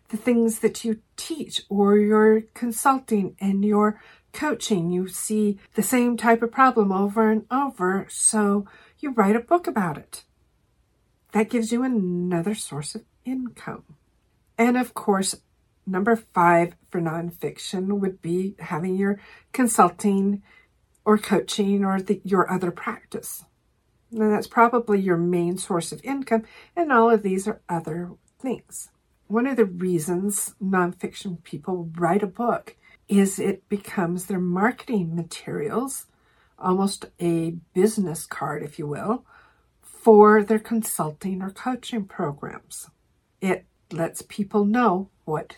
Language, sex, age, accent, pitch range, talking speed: English, female, 50-69, American, 180-220 Hz, 130 wpm